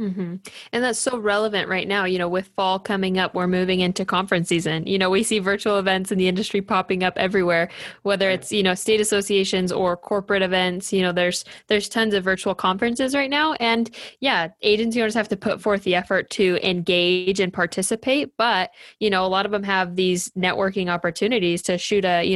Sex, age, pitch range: female, 10-29, 185-210 Hz